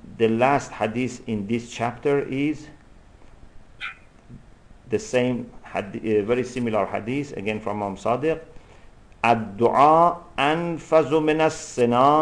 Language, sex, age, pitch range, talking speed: English, male, 50-69, 115-155 Hz, 95 wpm